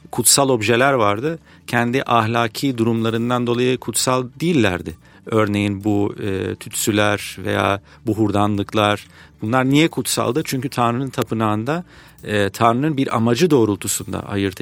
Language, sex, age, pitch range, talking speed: Turkish, male, 40-59, 110-150 Hz, 110 wpm